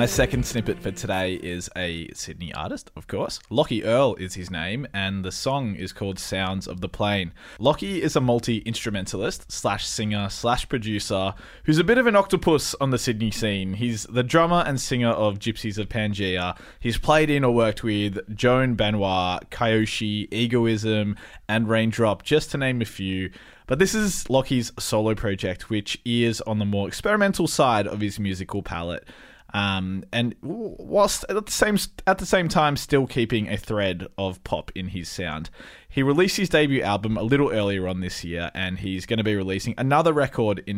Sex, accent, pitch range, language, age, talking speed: male, Australian, 100-130 Hz, English, 20-39, 185 wpm